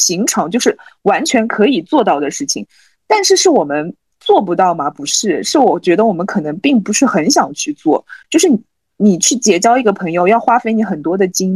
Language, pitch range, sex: Chinese, 175-235 Hz, female